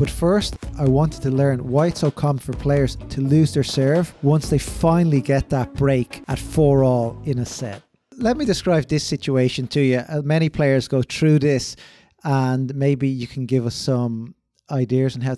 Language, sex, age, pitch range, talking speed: English, male, 20-39, 125-150 Hz, 190 wpm